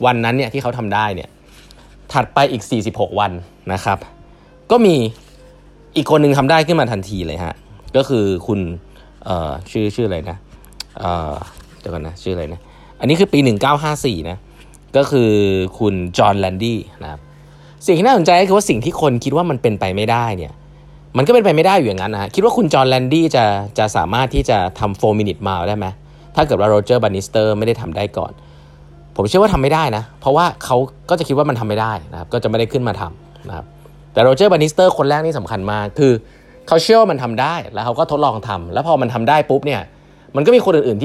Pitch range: 100-145 Hz